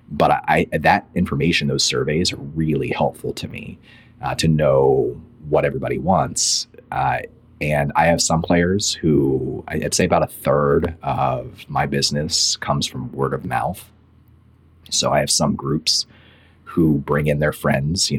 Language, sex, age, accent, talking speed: English, male, 30-49, American, 155 wpm